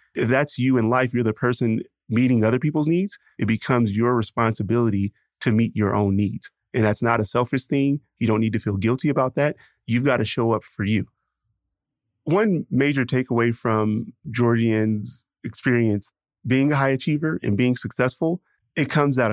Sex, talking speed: male, 180 wpm